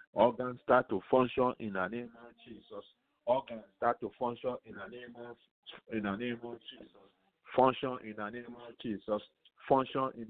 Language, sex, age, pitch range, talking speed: English, male, 50-69, 115-135 Hz, 175 wpm